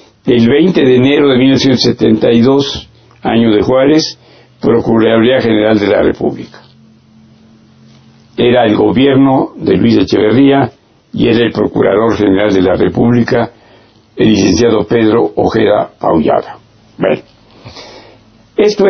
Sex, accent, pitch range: male, Mexican, 110-135 Hz